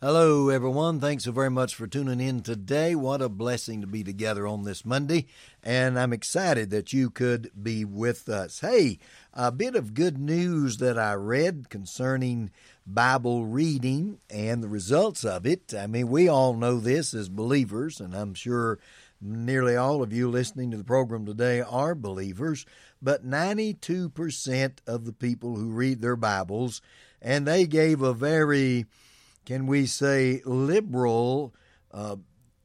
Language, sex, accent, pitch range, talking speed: English, male, American, 115-140 Hz, 160 wpm